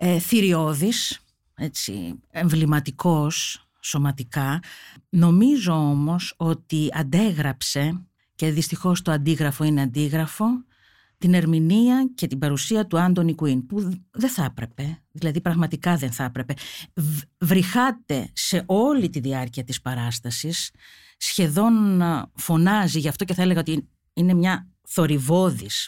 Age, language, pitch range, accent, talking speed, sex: 50-69, Greek, 150-210 Hz, native, 115 wpm, female